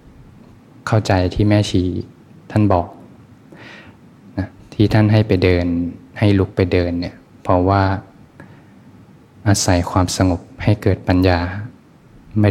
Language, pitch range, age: Thai, 90-100 Hz, 20-39